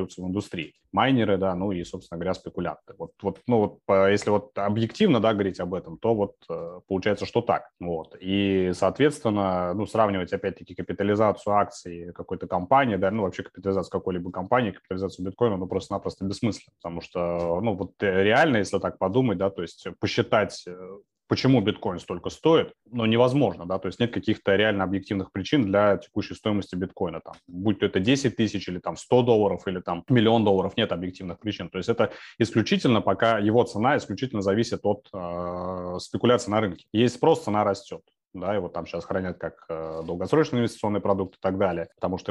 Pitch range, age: 90-105 Hz, 20-39